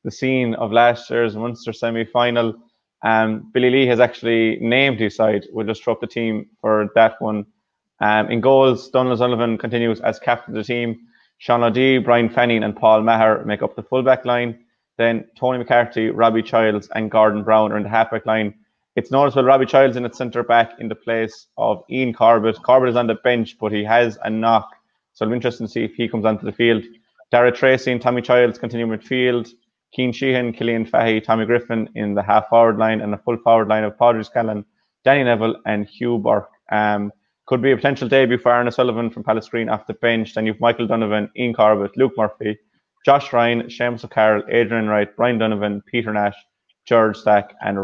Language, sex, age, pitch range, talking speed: English, male, 20-39, 110-120 Hz, 205 wpm